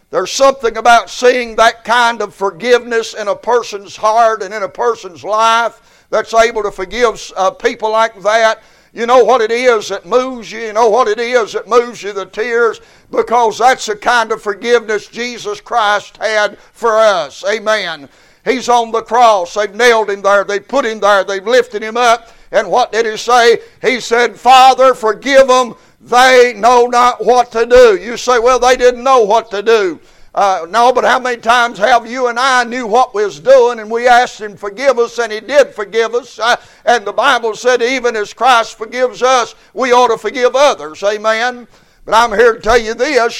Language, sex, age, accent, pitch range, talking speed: English, male, 60-79, American, 215-245 Hz, 200 wpm